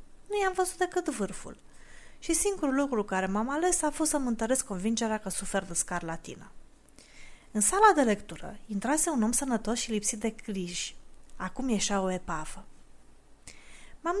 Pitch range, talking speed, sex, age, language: 195-280 Hz, 155 wpm, female, 20-39, Romanian